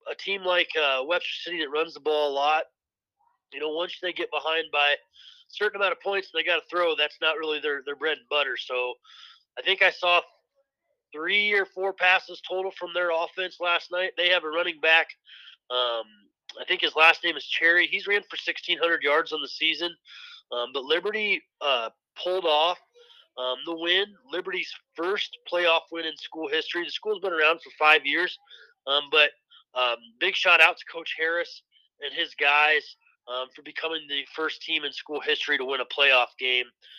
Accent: American